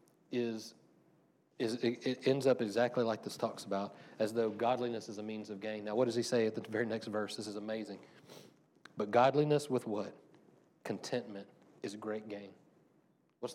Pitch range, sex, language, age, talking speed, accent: 110-135 Hz, male, English, 40-59, 180 wpm, American